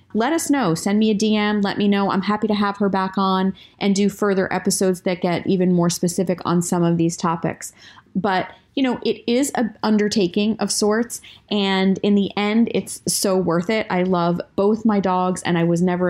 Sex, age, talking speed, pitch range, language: female, 30-49, 215 wpm, 185-225 Hz, English